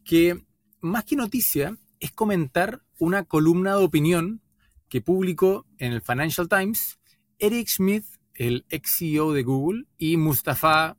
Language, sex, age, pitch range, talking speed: Spanish, male, 20-39, 125-180 Hz, 135 wpm